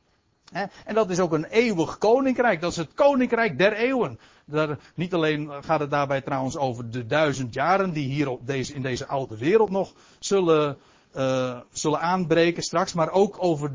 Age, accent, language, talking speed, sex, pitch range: 60-79, Dutch, Dutch, 180 wpm, male, 145-215 Hz